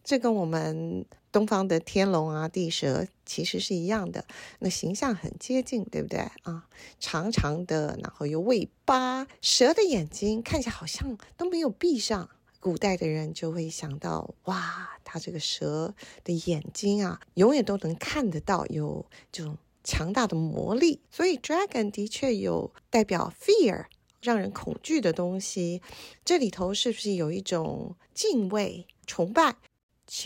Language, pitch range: English, 175-255 Hz